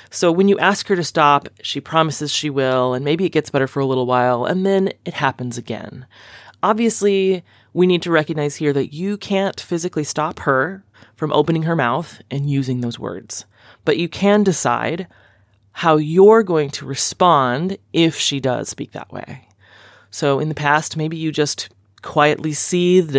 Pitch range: 130-165 Hz